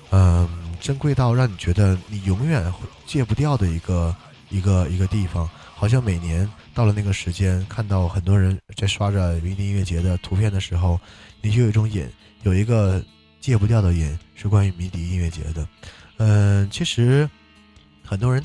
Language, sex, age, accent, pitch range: Chinese, male, 20-39, native, 90-110 Hz